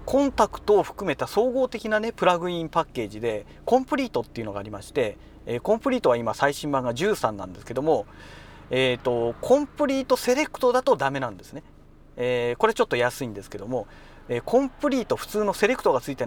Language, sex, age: Japanese, male, 40-59